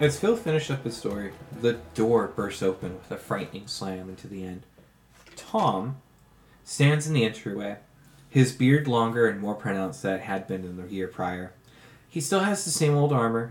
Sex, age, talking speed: male, 20-39, 190 wpm